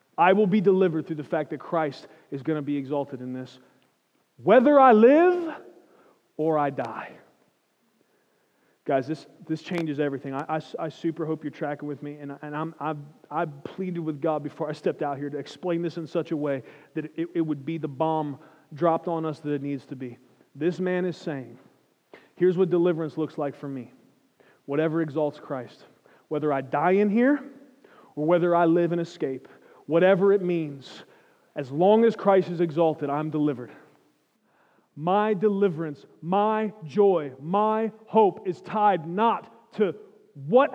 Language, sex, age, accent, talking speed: English, male, 30-49, American, 175 wpm